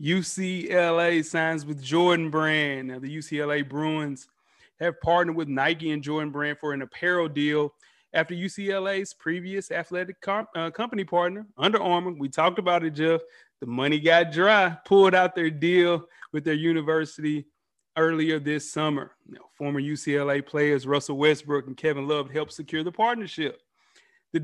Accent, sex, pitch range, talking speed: American, male, 145-175 Hz, 155 wpm